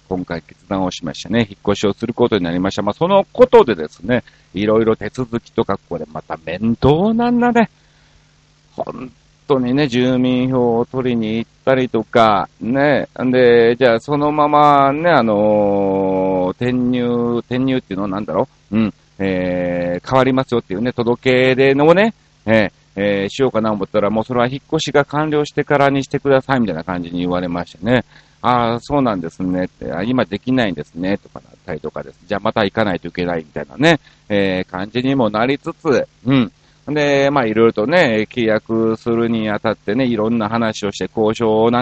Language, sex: Japanese, male